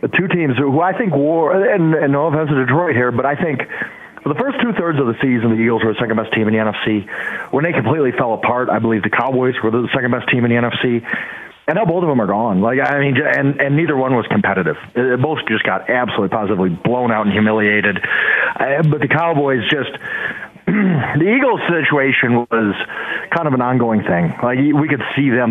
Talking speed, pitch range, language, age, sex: 225 wpm, 115-160 Hz, English, 40-59, male